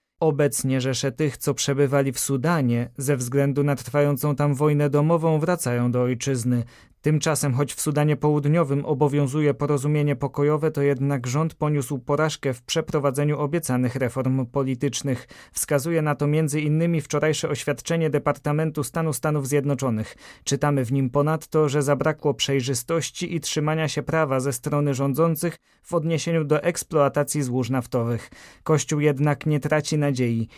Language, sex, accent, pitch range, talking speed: Polish, male, native, 135-155 Hz, 135 wpm